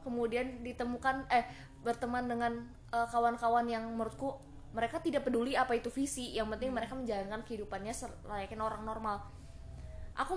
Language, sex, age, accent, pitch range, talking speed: Indonesian, female, 20-39, native, 220-255 Hz, 140 wpm